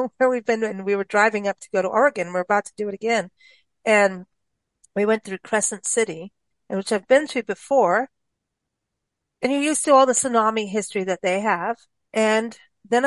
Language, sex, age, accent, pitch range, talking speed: English, female, 40-59, American, 190-245 Hz, 195 wpm